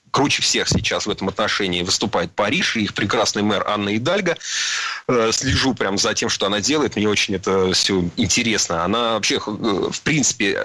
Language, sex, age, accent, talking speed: Russian, male, 30-49, native, 170 wpm